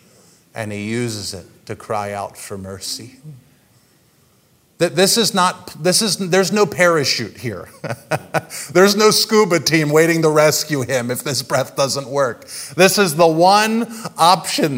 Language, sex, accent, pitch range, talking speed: English, male, American, 150-210 Hz, 145 wpm